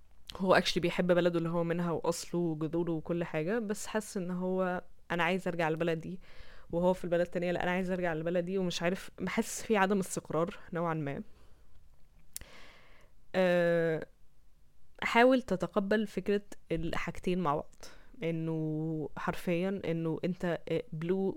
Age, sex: 10-29, female